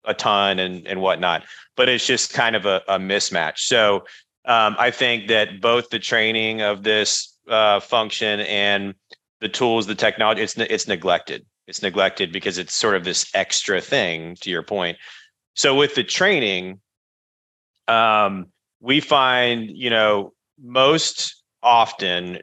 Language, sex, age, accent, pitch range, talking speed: English, male, 30-49, American, 95-115 Hz, 150 wpm